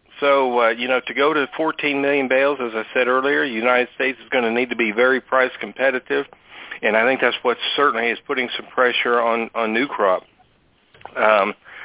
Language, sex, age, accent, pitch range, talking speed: English, male, 50-69, American, 120-145 Hz, 210 wpm